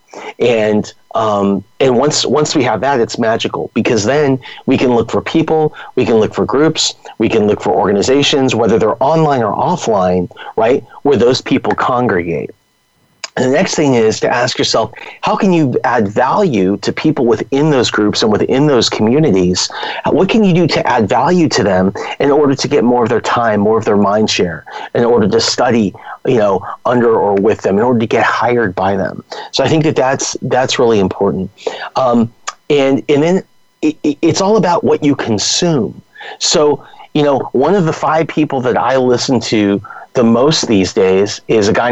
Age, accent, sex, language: 30-49, American, male, English